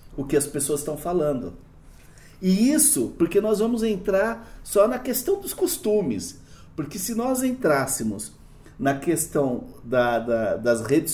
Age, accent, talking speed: 50-69, Brazilian, 135 wpm